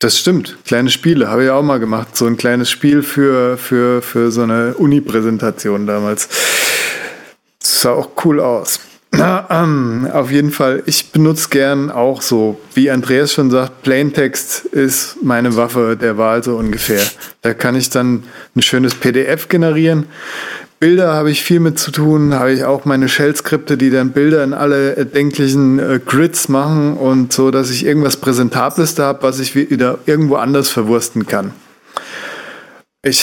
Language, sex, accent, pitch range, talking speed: German, male, German, 120-140 Hz, 160 wpm